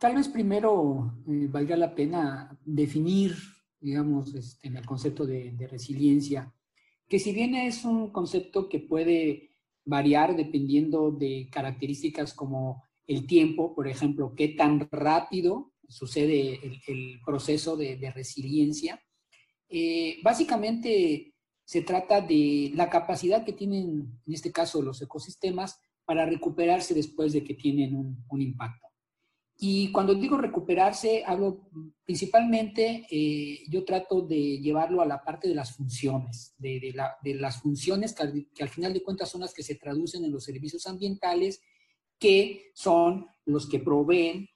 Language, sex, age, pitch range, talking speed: English, male, 40-59, 140-185 Hz, 145 wpm